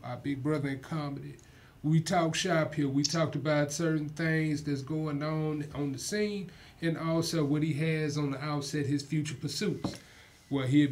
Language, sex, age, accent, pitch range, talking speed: English, male, 30-49, American, 145-175 Hz, 180 wpm